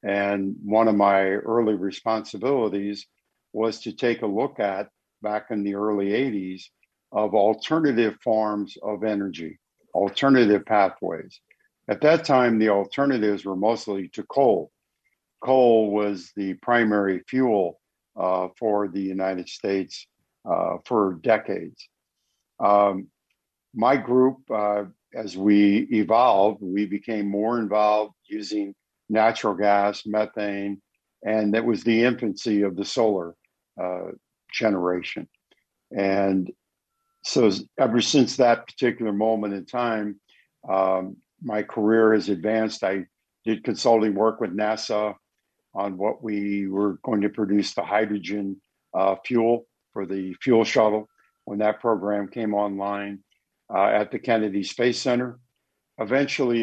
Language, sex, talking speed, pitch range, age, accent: English, male, 125 wpm, 100-115 Hz, 60-79, American